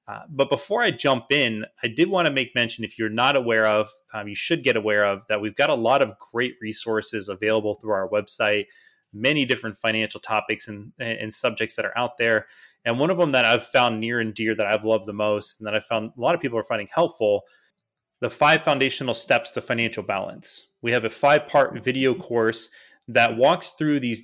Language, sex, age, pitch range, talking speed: English, male, 30-49, 110-130 Hz, 220 wpm